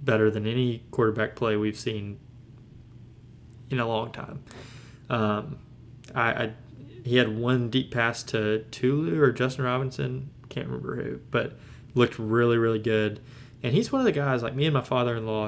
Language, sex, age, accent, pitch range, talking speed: English, male, 20-39, American, 115-135 Hz, 165 wpm